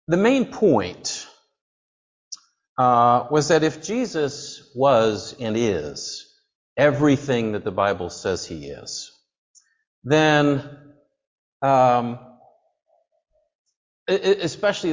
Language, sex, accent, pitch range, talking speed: English, male, American, 120-160 Hz, 85 wpm